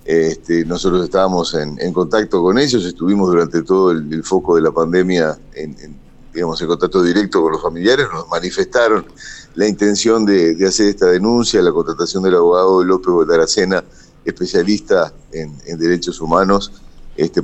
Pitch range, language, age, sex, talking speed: 85-105 Hz, Spanish, 50-69, male, 160 wpm